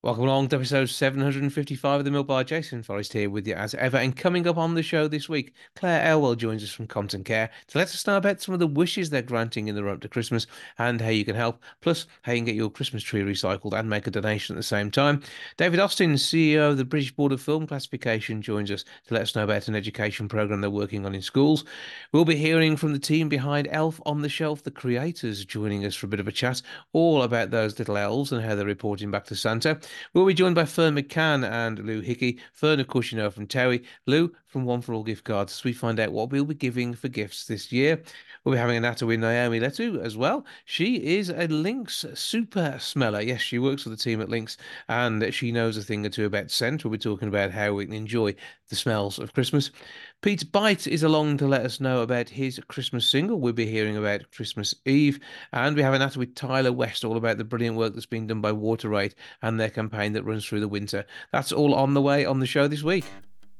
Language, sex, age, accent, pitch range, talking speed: English, male, 40-59, British, 110-145 Hz, 245 wpm